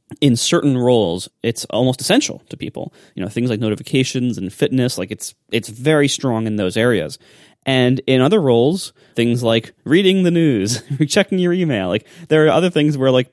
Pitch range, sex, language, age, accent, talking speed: 110-155 Hz, male, English, 20-39, American, 190 wpm